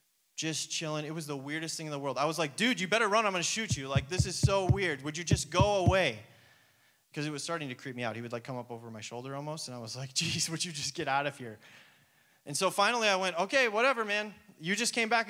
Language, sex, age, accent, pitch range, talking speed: English, male, 20-39, American, 155-210 Hz, 285 wpm